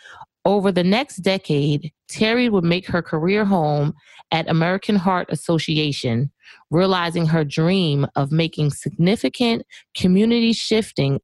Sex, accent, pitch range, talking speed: female, American, 145-185 Hz, 110 wpm